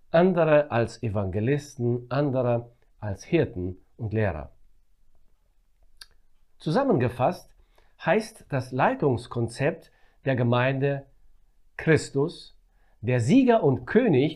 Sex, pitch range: male, 120-165 Hz